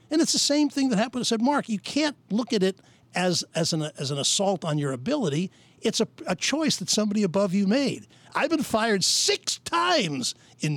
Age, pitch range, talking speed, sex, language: 60-79, 140-230 Hz, 215 wpm, male, English